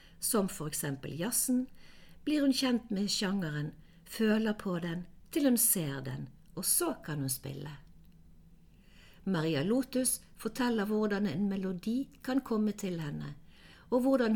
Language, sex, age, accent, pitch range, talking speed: English, female, 60-79, Swedish, 170-230 Hz, 140 wpm